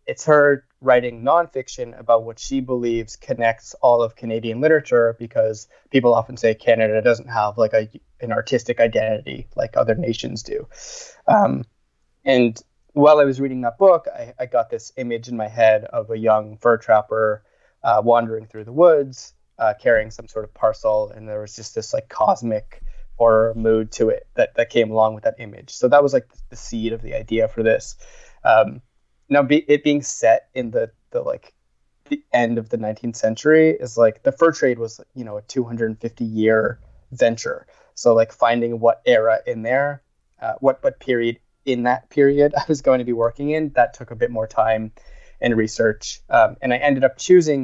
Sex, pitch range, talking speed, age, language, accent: male, 110-145 Hz, 190 wpm, 20-39, English, American